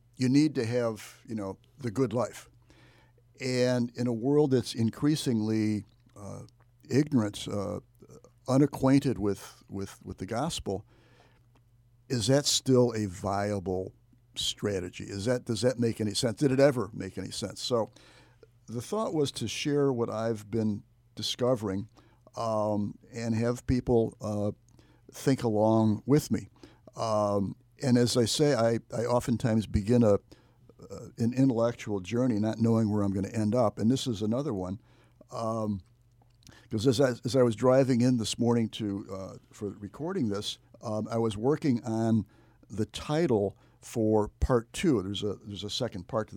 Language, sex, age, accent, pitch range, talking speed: English, male, 60-79, American, 105-125 Hz, 155 wpm